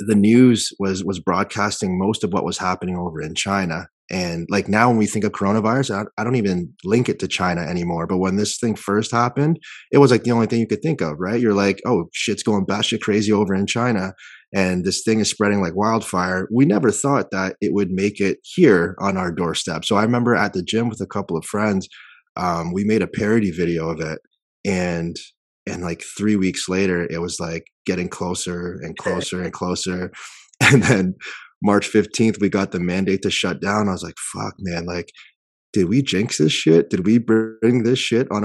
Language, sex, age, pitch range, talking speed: English, male, 30-49, 90-110 Hz, 215 wpm